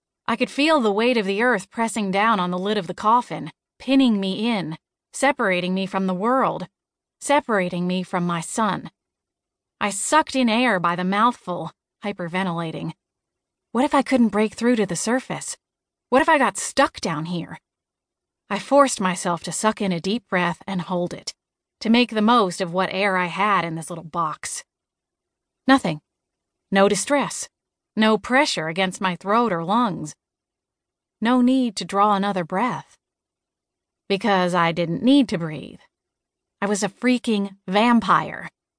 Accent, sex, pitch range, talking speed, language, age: American, female, 185-240 Hz, 160 wpm, English, 30-49